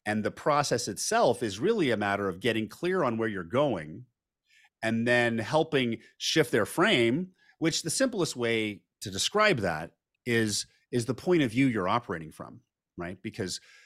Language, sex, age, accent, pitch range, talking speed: English, male, 40-59, American, 105-140 Hz, 170 wpm